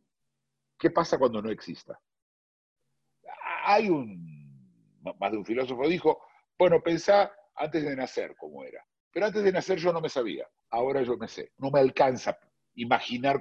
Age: 50-69